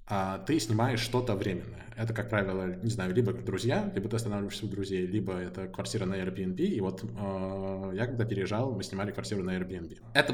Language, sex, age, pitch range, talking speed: Russian, male, 20-39, 100-120 Hz, 195 wpm